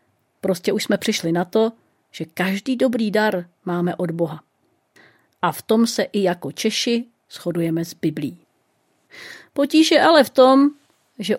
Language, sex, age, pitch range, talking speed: Czech, female, 40-59, 170-220 Hz, 150 wpm